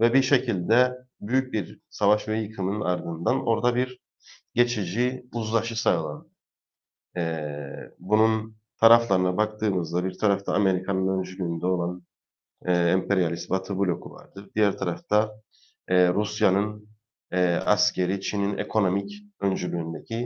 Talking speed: 105 wpm